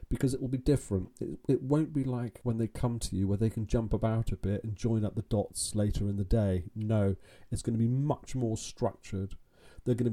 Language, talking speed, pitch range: English, 235 wpm, 100-120 Hz